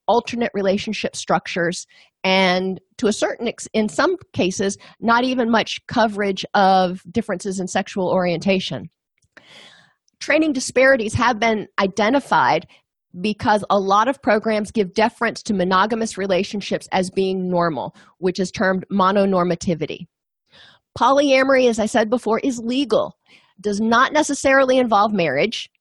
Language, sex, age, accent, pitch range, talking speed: English, female, 40-59, American, 185-230 Hz, 125 wpm